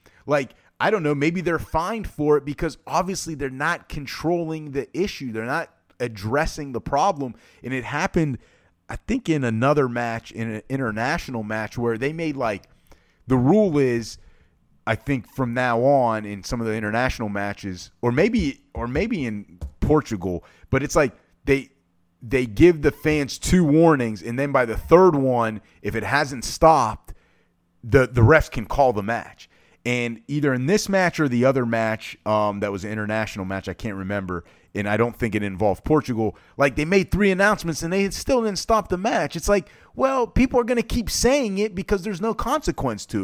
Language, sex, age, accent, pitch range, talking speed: English, male, 30-49, American, 105-155 Hz, 190 wpm